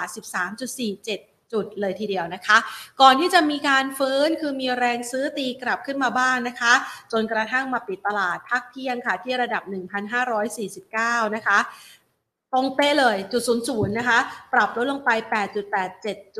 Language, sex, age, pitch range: Thai, female, 30-49, 200-245 Hz